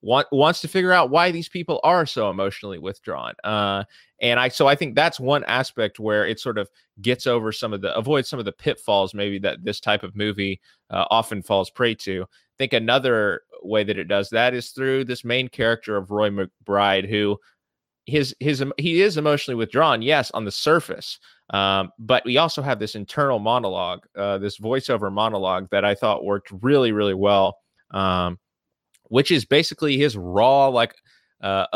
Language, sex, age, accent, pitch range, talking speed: English, male, 30-49, American, 100-135 Hz, 185 wpm